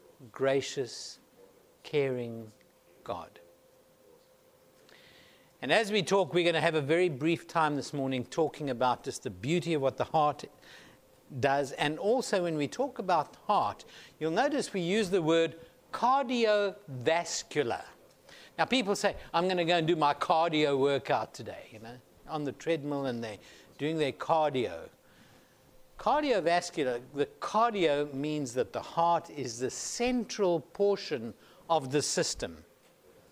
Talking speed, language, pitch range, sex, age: 140 wpm, English, 140-200 Hz, male, 60-79